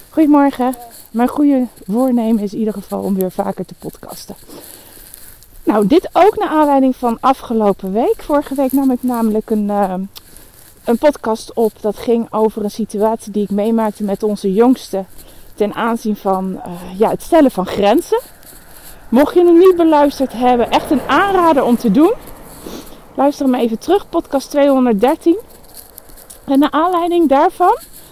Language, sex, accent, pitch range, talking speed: Dutch, female, Dutch, 230-295 Hz, 155 wpm